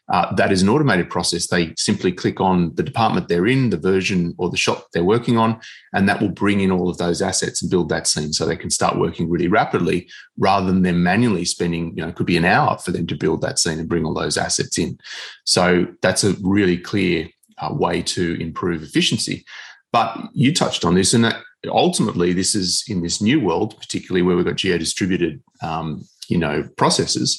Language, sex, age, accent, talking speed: English, male, 30-49, Australian, 215 wpm